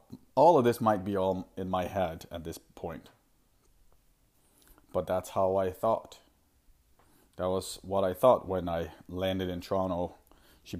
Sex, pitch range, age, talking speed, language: male, 90-110 Hz, 30-49, 155 wpm, English